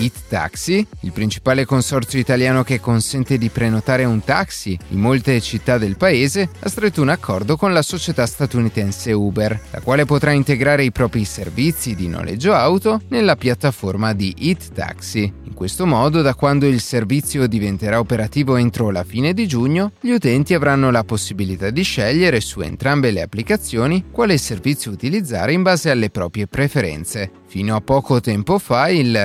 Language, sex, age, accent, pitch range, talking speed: Italian, male, 30-49, native, 105-145 Hz, 165 wpm